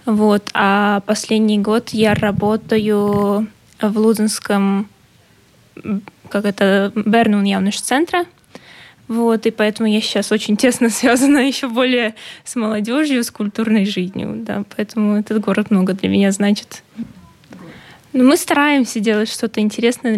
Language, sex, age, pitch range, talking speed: Russian, female, 10-29, 200-235 Hz, 120 wpm